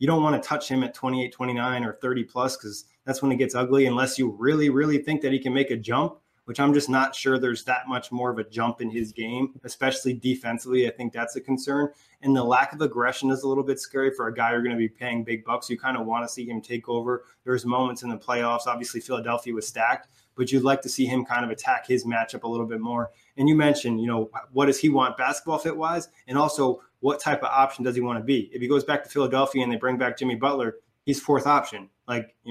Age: 20-39